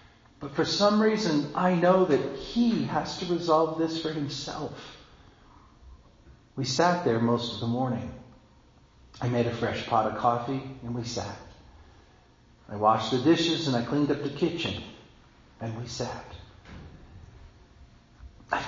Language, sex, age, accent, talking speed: English, male, 40-59, American, 145 wpm